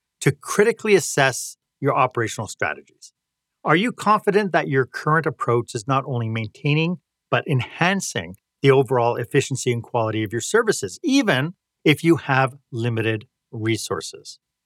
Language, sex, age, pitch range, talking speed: English, male, 40-59, 125-170 Hz, 135 wpm